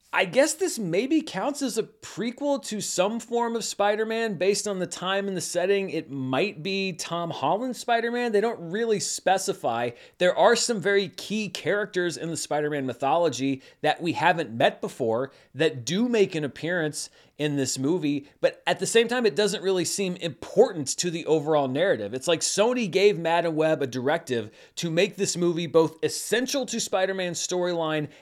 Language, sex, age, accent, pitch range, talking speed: English, male, 30-49, American, 140-205 Hz, 180 wpm